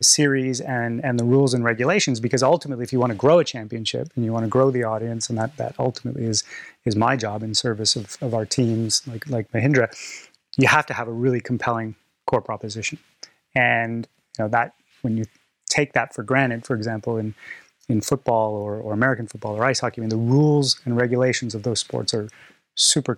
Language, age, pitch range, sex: English, 30-49, 115-135 Hz, male